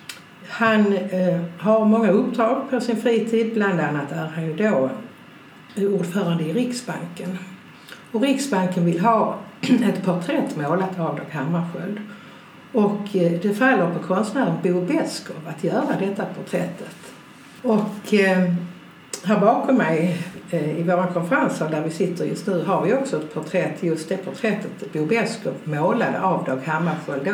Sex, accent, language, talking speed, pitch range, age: female, native, Swedish, 135 wpm, 170-210 Hz, 60-79